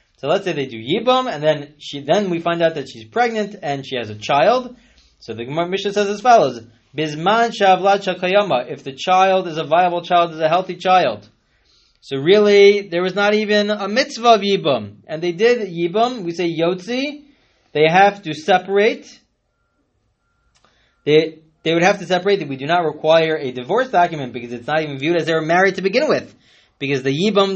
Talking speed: 195 wpm